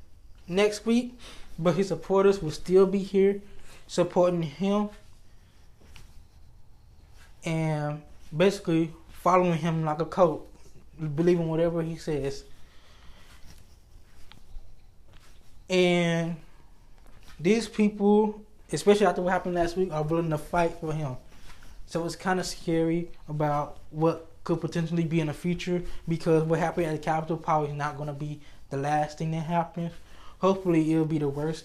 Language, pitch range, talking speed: English, 140-170 Hz, 135 wpm